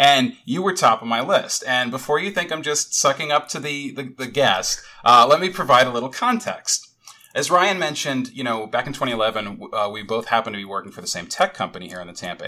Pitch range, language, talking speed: 115-170 Hz, English, 245 wpm